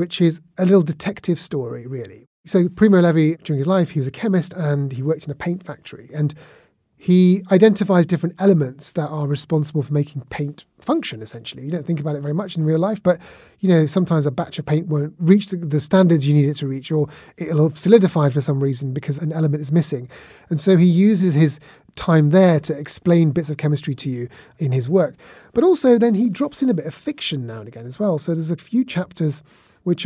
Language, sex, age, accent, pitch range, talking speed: English, male, 30-49, British, 145-180 Hz, 230 wpm